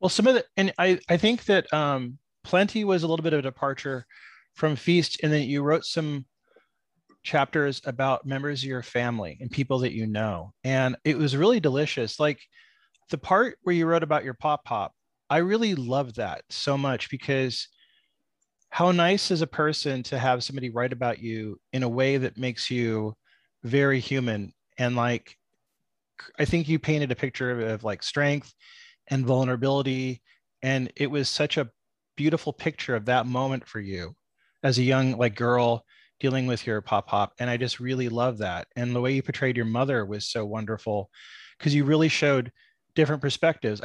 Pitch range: 120-150 Hz